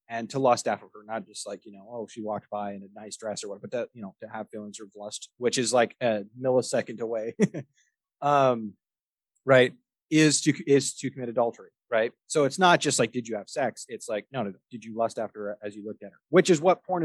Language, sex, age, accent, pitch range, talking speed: English, male, 30-49, American, 110-140 Hz, 255 wpm